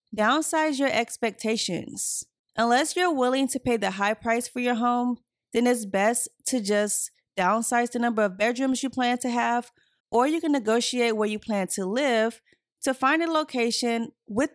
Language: English